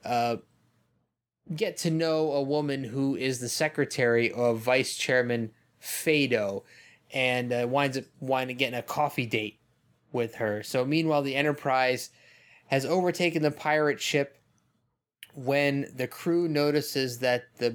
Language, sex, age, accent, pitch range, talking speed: English, male, 20-39, American, 125-150 Hz, 140 wpm